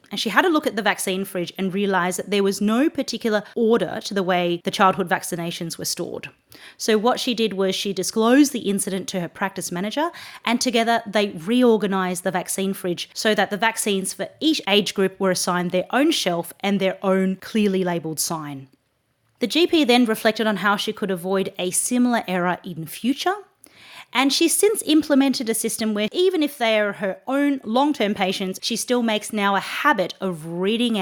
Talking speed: 195 wpm